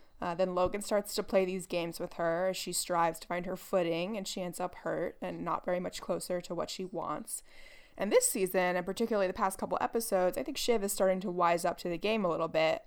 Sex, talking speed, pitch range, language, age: female, 250 wpm, 175-205 Hz, English, 20-39